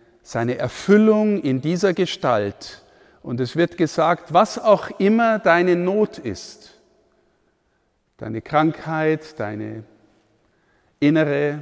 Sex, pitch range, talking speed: male, 140-195 Hz, 100 wpm